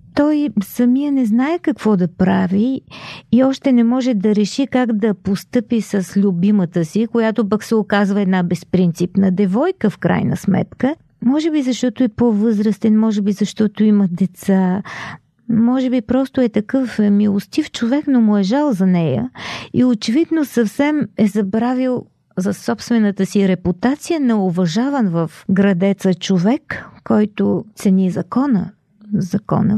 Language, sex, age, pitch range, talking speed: Bulgarian, female, 40-59, 195-255 Hz, 140 wpm